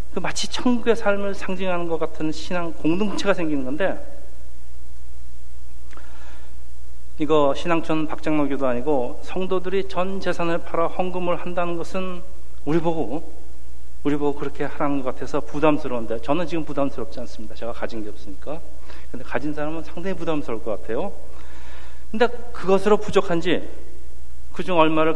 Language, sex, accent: Korean, male, native